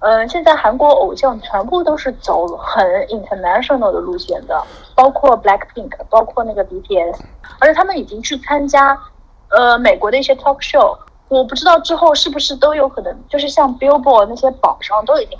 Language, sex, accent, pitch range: Chinese, female, native, 220-300 Hz